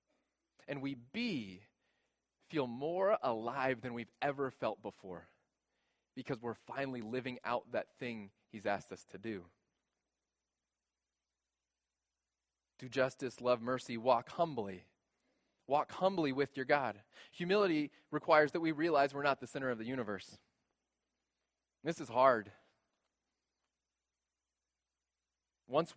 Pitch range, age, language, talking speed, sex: 95-150 Hz, 20-39, English, 115 wpm, male